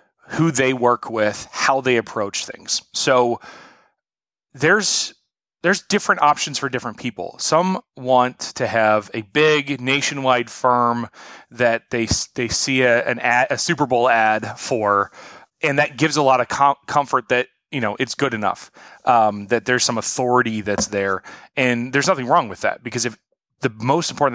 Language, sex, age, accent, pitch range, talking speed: English, male, 30-49, American, 110-135 Hz, 165 wpm